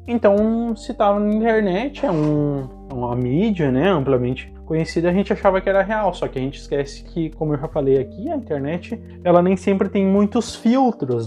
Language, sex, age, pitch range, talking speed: Portuguese, male, 20-39, 145-195 Hz, 195 wpm